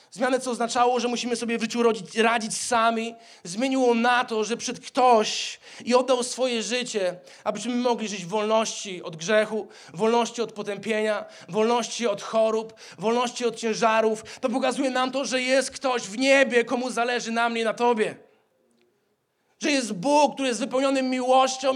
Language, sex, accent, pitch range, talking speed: Polish, male, native, 205-245 Hz, 165 wpm